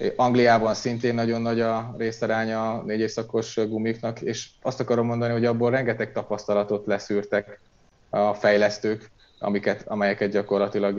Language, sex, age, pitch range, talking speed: Hungarian, male, 30-49, 100-115 Hz, 125 wpm